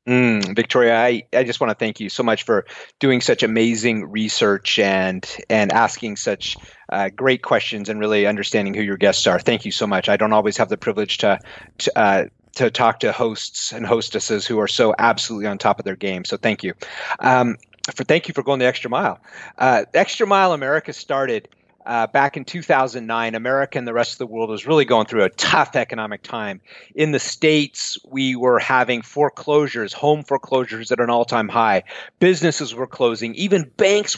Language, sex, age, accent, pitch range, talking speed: English, male, 30-49, American, 120-155 Hz, 195 wpm